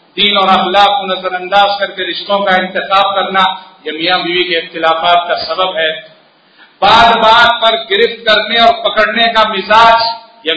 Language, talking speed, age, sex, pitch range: Hindi, 160 wpm, 50-69, male, 190-245 Hz